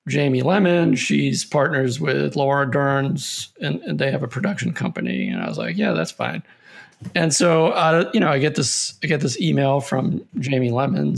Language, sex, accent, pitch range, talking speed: English, male, American, 130-165 Hz, 190 wpm